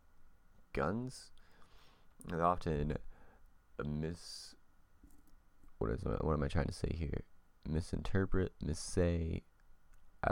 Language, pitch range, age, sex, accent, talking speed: English, 75-90 Hz, 30-49, male, American, 95 wpm